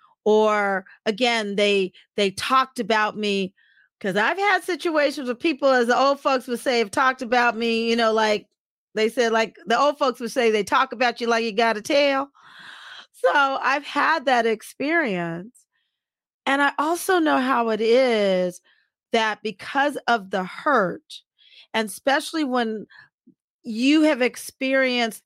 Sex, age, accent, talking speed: female, 40-59, American, 155 wpm